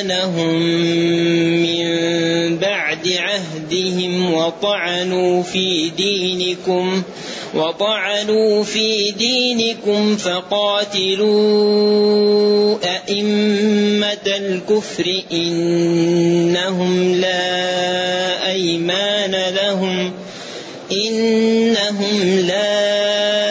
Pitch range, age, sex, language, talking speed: 175-205 Hz, 30-49, male, Arabic, 40 wpm